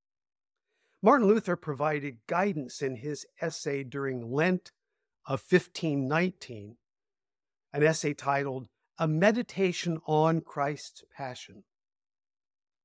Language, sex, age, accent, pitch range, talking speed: English, male, 50-69, American, 155-215 Hz, 90 wpm